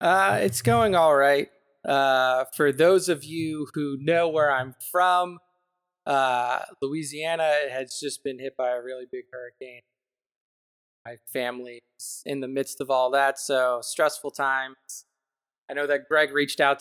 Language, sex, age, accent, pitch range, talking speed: English, male, 20-39, American, 130-155 Hz, 155 wpm